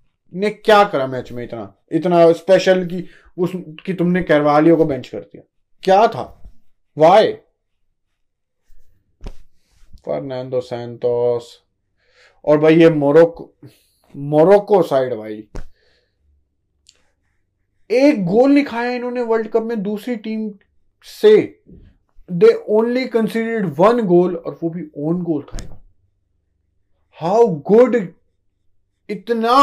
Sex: male